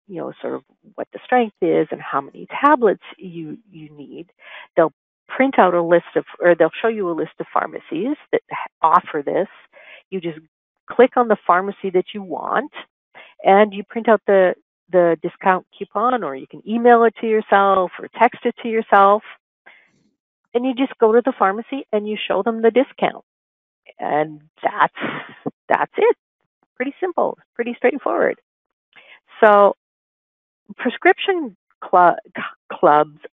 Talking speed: 155 wpm